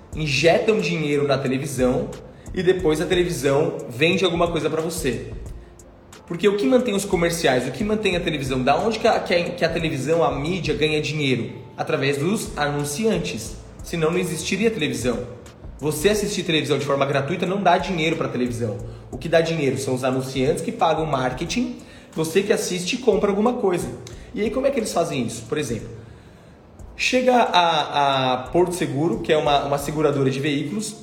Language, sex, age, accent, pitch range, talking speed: Portuguese, male, 20-39, Brazilian, 135-180 Hz, 180 wpm